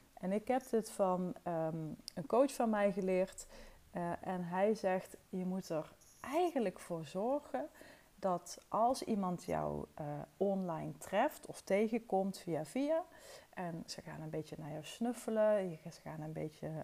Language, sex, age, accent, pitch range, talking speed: Dutch, female, 30-49, Dutch, 175-235 Hz, 155 wpm